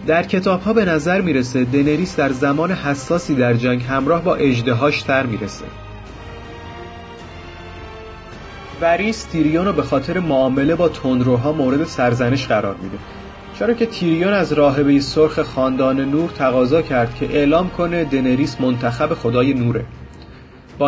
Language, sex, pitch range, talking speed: Persian, female, 120-155 Hz, 125 wpm